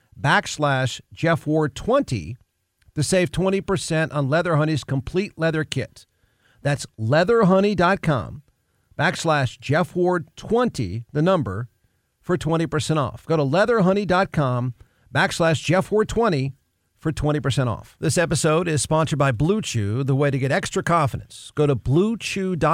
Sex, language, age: male, English, 50-69